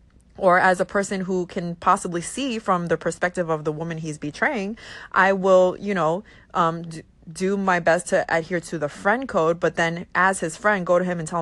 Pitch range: 160-190 Hz